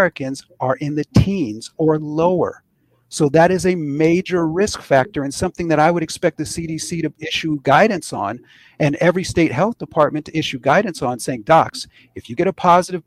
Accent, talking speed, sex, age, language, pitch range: American, 195 wpm, male, 40-59, English, 135-170 Hz